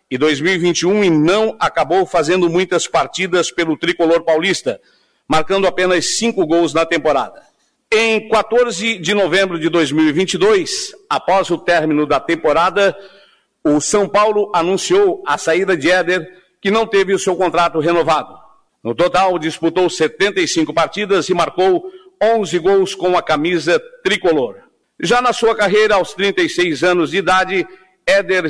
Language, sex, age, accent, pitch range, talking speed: Portuguese, male, 50-69, Brazilian, 160-205 Hz, 135 wpm